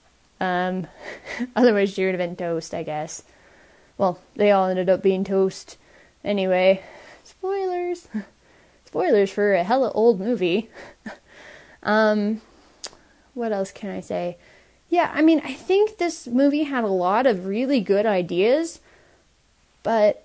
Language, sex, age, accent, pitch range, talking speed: English, female, 10-29, American, 185-240 Hz, 135 wpm